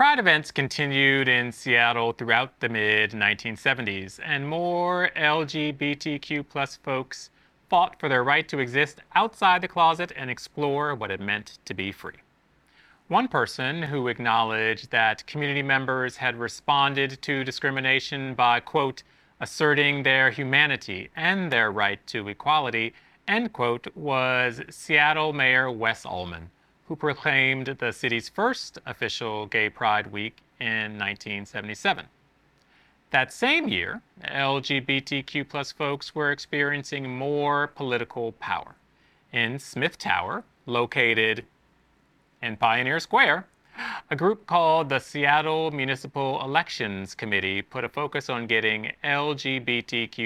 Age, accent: 30-49, American